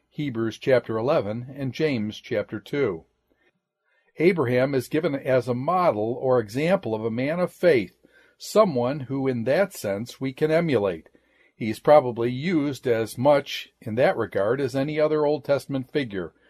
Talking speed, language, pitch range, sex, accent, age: 155 wpm, English, 120-155 Hz, male, American, 50-69